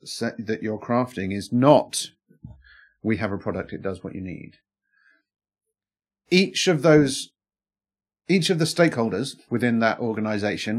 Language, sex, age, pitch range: English, male, 30-49, 100-135 Hz